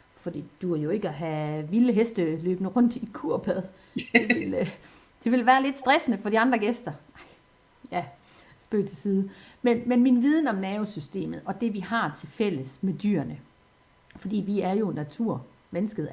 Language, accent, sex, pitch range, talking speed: Danish, native, female, 165-240 Hz, 180 wpm